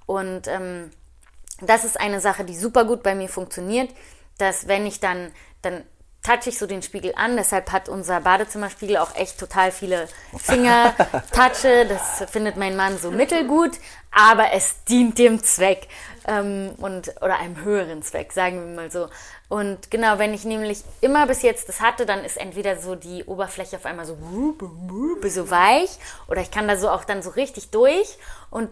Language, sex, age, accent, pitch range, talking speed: German, female, 20-39, German, 190-235 Hz, 180 wpm